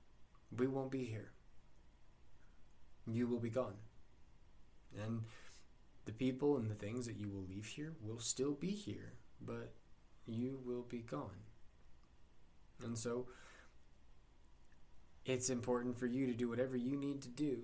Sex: male